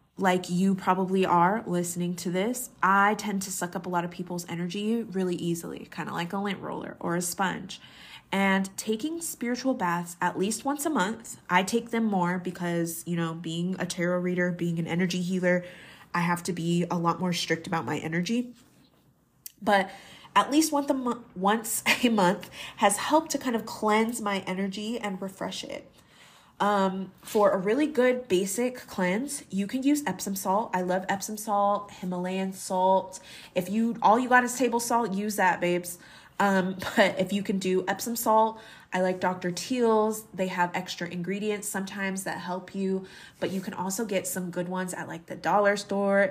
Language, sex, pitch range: English, female, 180-215 Hz